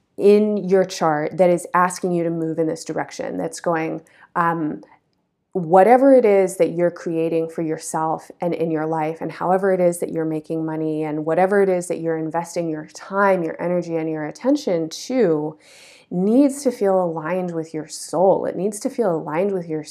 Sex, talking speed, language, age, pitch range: female, 195 wpm, English, 20-39, 165-200 Hz